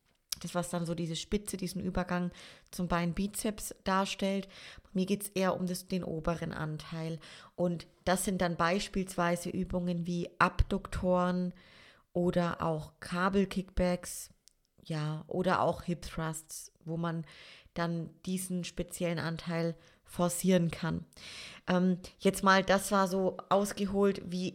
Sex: female